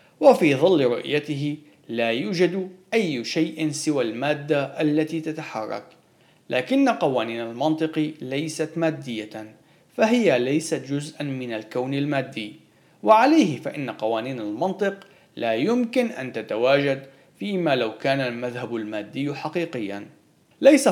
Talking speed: 105 wpm